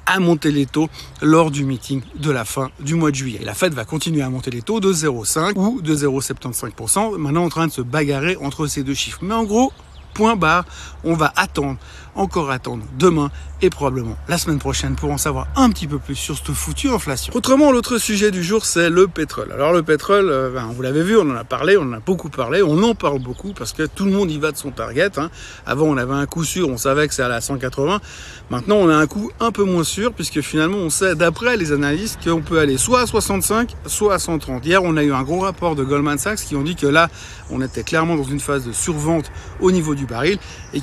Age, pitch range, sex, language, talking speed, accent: 60-79, 135-180 Hz, male, French, 245 wpm, French